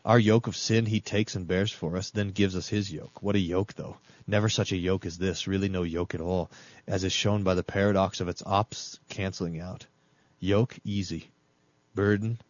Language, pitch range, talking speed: English, 95-110 Hz, 210 wpm